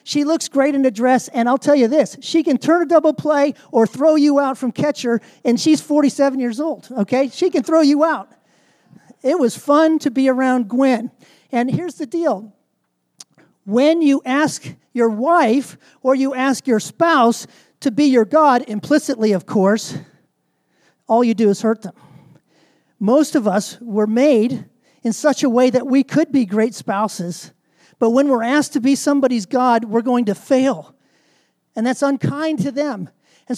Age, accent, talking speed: 40-59, American, 180 wpm